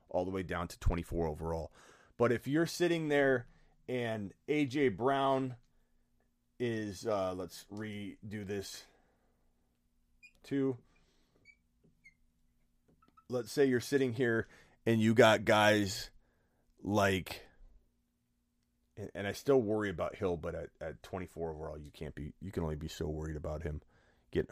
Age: 30-49